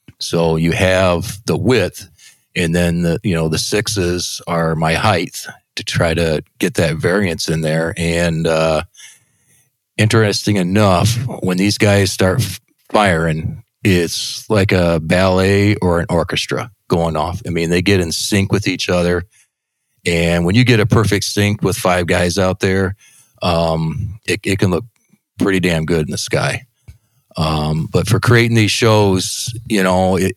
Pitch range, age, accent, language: 85-105 Hz, 40-59, American, English